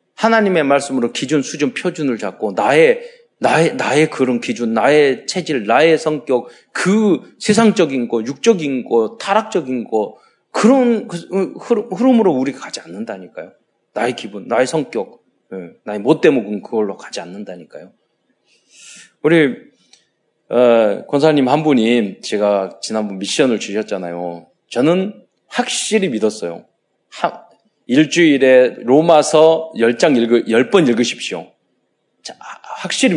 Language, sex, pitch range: Korean, male, 115-185 Hz